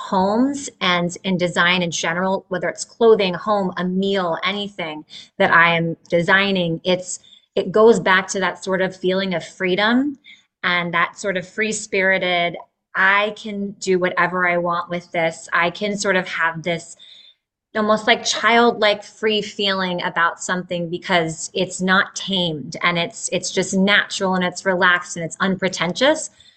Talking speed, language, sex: 160 wpm, English, female